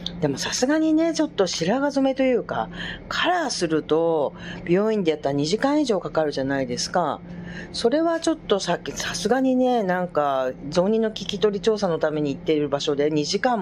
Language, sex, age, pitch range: Japanese, female, 40-59, 150-215 Hz